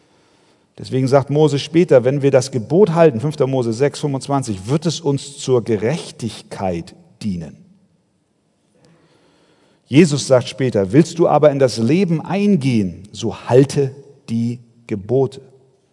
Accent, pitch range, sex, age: German, 140-195 Hz, male, 50-69